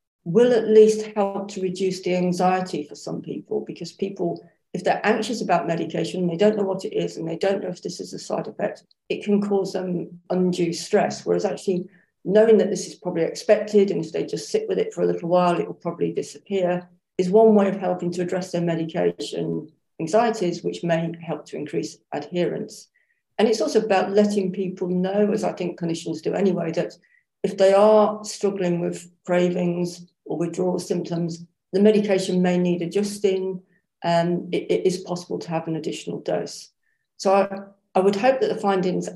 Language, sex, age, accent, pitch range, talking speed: English, female, 50-69, British, 175-200 Hz, 190 wpm